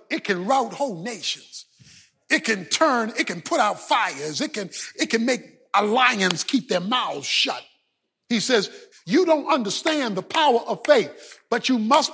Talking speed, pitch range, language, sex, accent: 175 wpm, 225-315 Hz, English, male, American